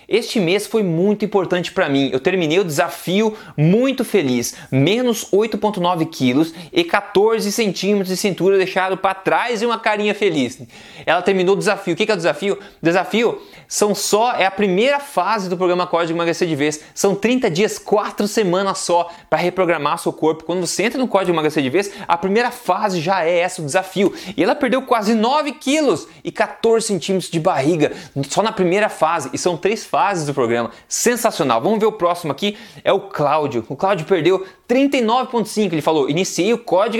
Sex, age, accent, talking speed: male, 20-39, Brazilian, 195 wpm